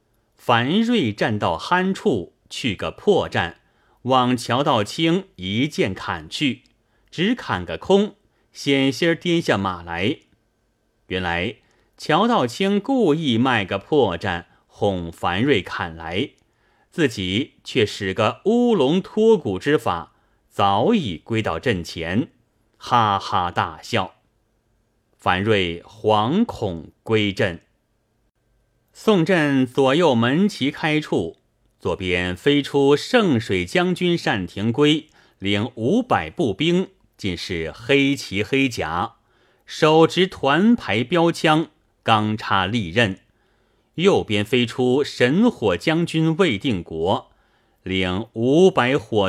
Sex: male